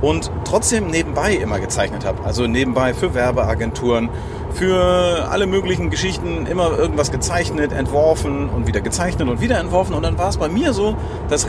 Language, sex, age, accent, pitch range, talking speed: German, male, 40-59, German, 110-145 Hz, 165 wpm